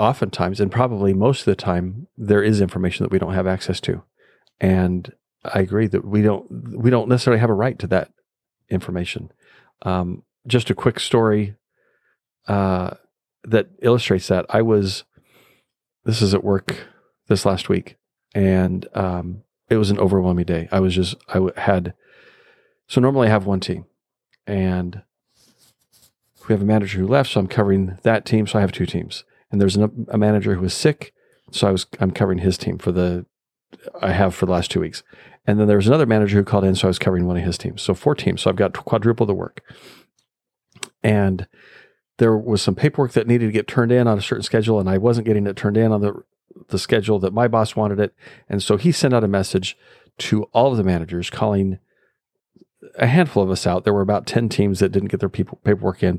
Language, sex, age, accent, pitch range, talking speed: English, male, 40-59, American, 95-115 Hz, 210 wpm